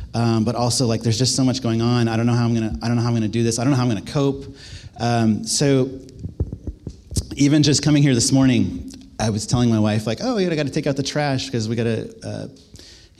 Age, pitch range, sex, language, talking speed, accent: 30-49, 110-140 Hz, male, English, 255 wpm, American